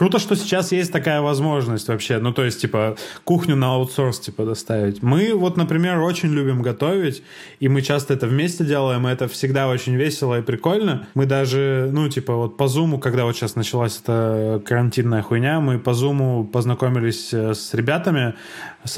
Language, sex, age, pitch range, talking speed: Russian, male, 20-39, 120-140 Hz, 175 wpm